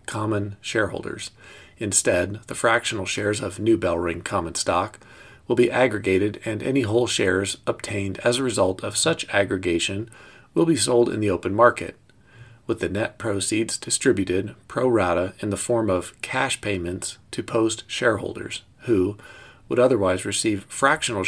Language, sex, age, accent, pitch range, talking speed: English, male, 40-59, American, 95-120 Hz, 150 wpm